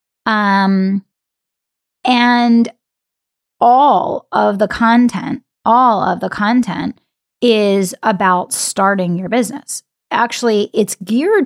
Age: 30-49